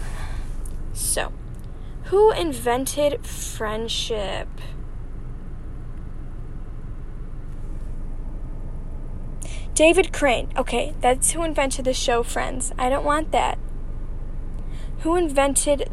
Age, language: 10-29, English